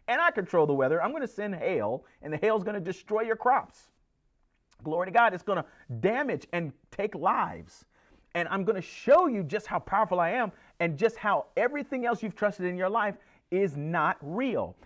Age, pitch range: 40-59, 185-255 Hz